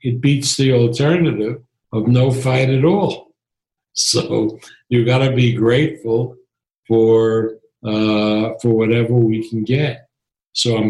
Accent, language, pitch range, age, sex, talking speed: American, English, 110-125 Hz, 60-79, male, 130 wpm